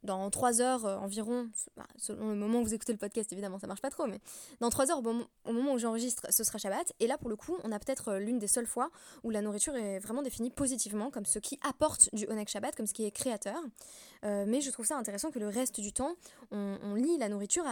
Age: 20-39